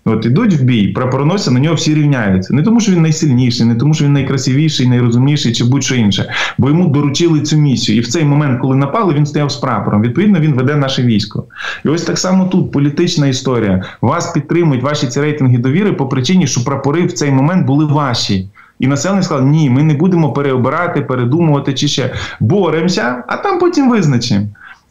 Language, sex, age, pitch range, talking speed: Ukrainian, male, 20-39, 120-155 Hz, 195 wpm